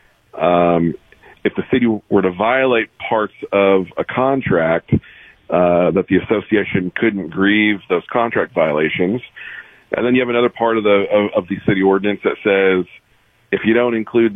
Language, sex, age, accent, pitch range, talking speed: English, male, 40-59, American, 90-110 Hz, 165 wpm